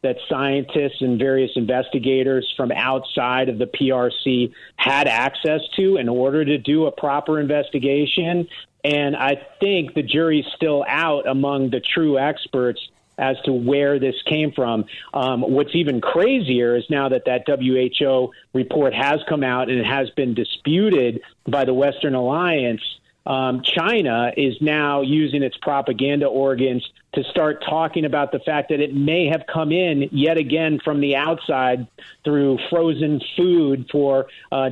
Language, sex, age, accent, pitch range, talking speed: English, male, 40-59, American, 130-150 Hz, 155 wpm